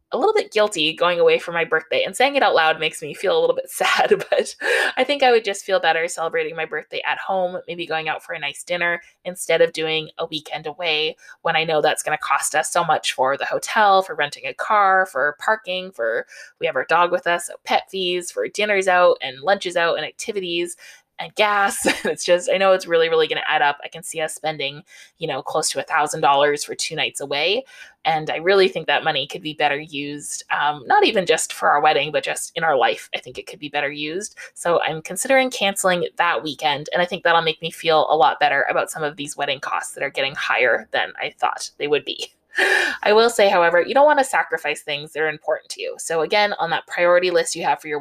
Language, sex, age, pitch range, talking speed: English, female, 20-39, 160-250 Hz, 245 wpm